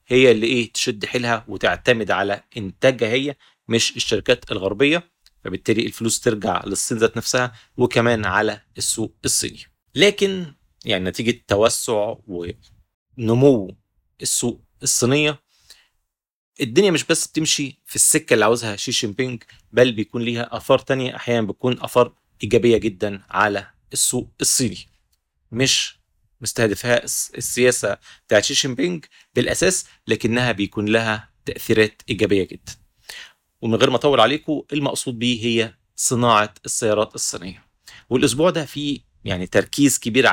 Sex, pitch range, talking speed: male, 105-125 Hz, 120 wpm